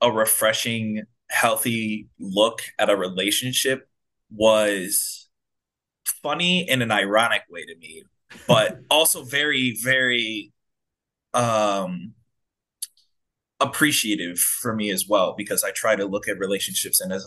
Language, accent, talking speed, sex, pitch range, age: English, American, 120 wpm, male, 105-135 Hz, 20-39